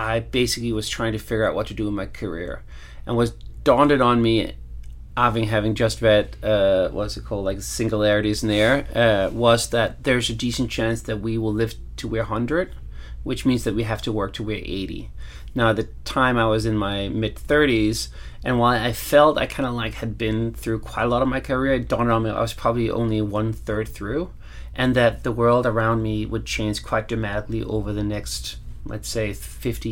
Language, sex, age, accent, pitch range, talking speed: English, male, 30-49, American, 105-120 Hz, 215 wpm